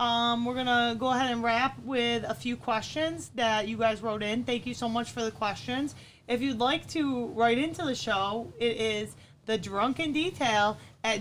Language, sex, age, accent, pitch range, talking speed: English, female, 30-49, American, 220-270 Hz, 195 wpm